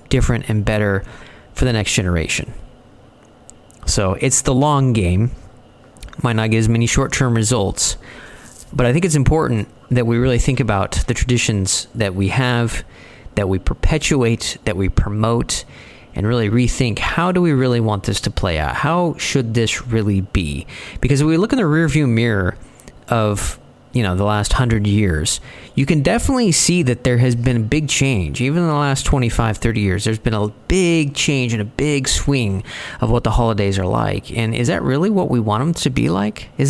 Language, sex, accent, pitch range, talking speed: English, male, American, 105-135 Hz, 190 wpm